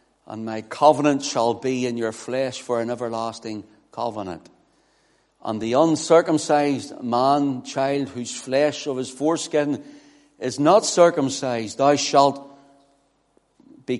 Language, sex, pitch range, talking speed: English, male, 115-140 Hz, 120 wpm